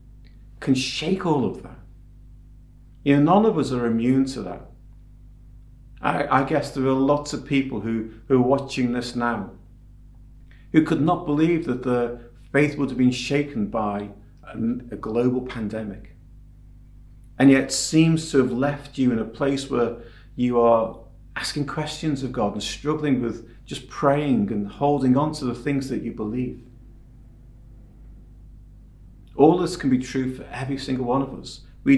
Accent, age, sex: British, 40-59, male